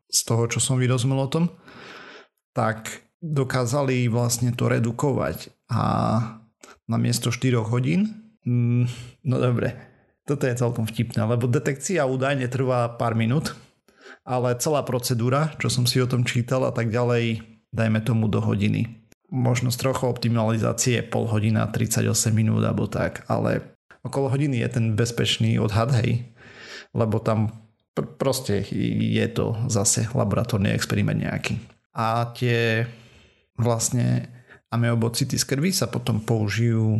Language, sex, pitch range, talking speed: Slovak, male, 110-125 Hz, 135 wpm